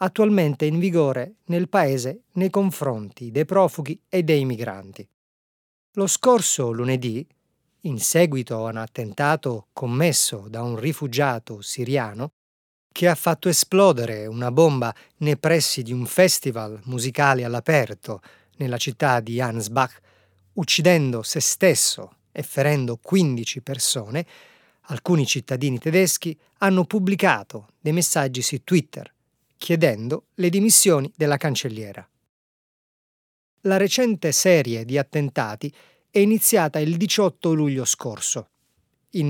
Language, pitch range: Italian, 120-175 Hz